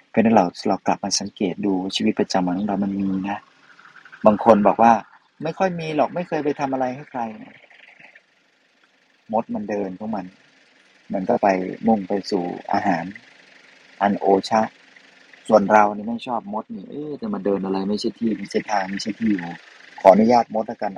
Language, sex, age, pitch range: Thai, male, 30-49, 100-115 Hz